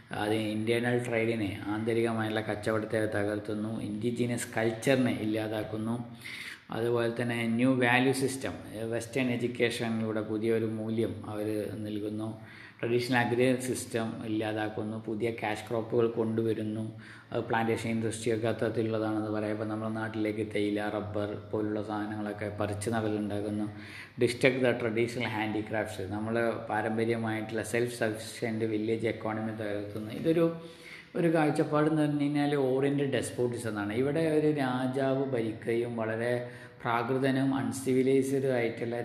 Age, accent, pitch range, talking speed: 20-39, native, 105-120 Hz, 110 wpm